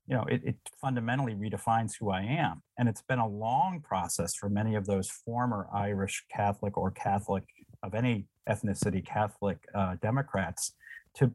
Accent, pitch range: American, 100-130 Hz